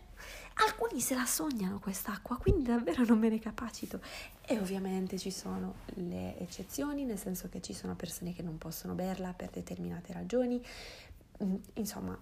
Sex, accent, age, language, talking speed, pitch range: female, native, 20-39, Italian, 150 wpm, 180-230 Hz